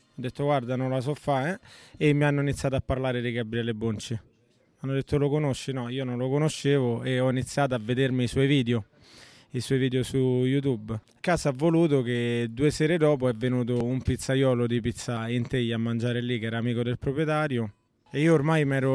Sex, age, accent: male, 20-39, native